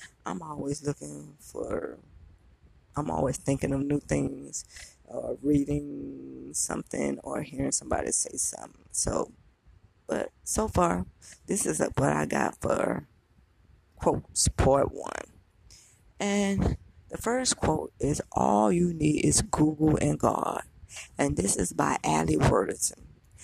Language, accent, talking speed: English, American, 130 wpm